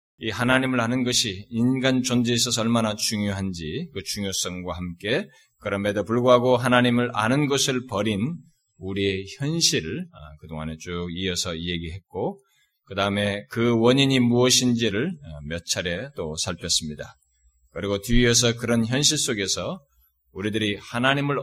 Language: Korean